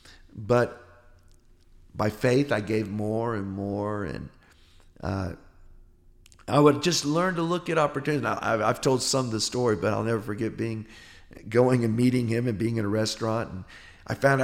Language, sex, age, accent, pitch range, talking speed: English, male, 50-69, American, 105-145 Hz, 175 wpm